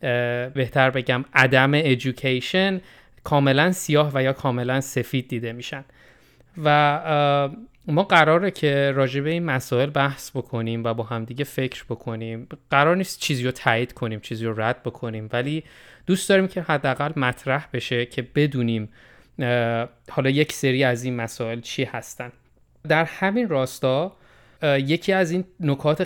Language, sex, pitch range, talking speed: Persian, male, 120-140 Hz, 140 wpm